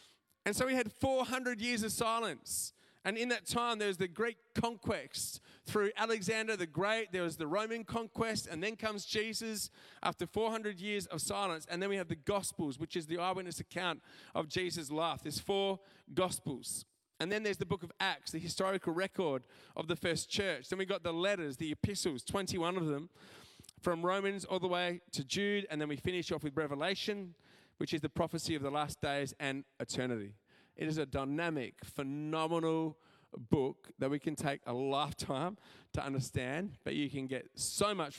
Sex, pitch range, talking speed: male, 155-210 Hz, 190 wpm